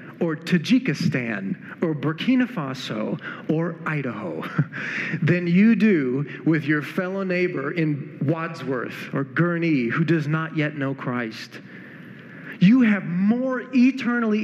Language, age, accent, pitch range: English, 40-59, American, 180-250 Hz